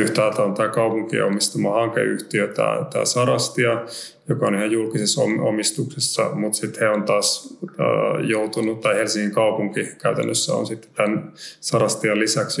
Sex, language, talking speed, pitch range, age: male, Finnish, 135 wpm, 105-115 Hz, 30-49